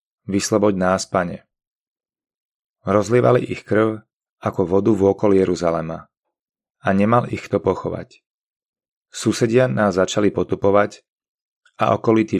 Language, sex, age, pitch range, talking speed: Slovak, male, 30-49, 95-110 Hz, 105 wpm